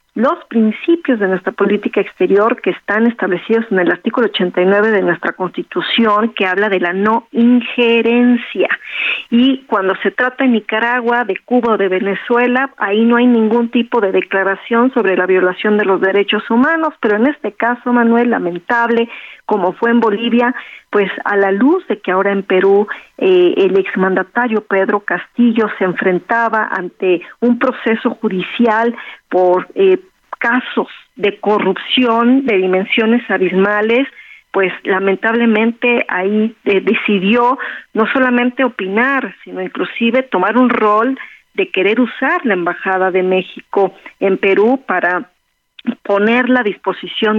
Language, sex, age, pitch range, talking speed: Spanish, female, 40-59, 195-245 Hz, 140 wpm